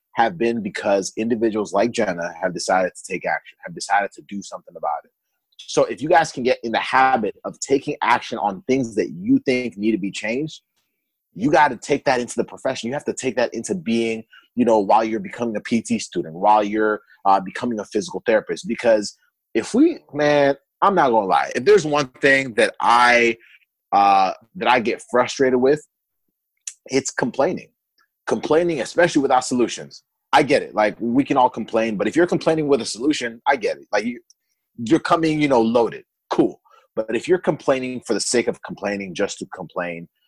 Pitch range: 110-155 Hz